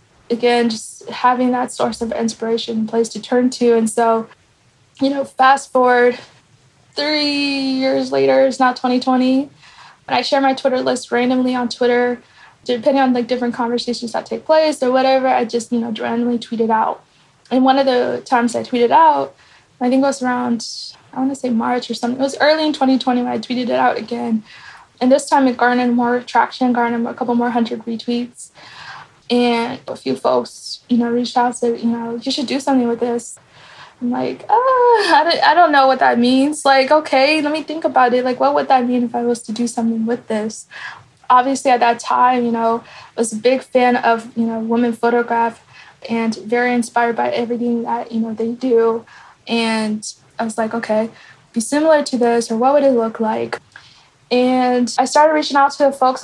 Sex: female